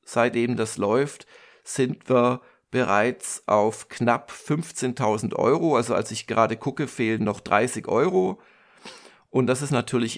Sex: male